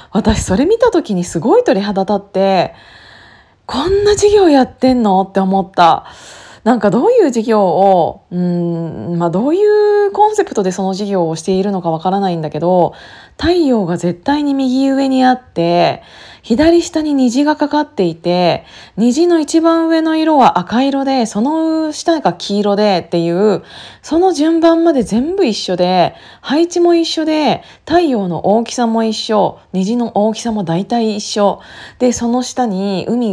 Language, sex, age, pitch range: Japanese, female, 20-39, 180-275 Hz